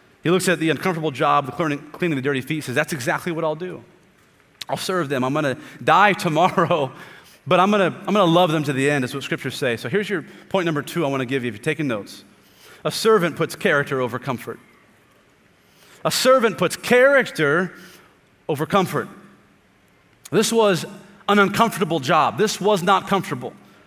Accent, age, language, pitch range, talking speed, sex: American, 30-49, English, 140-180 Hz, 185 wpm, male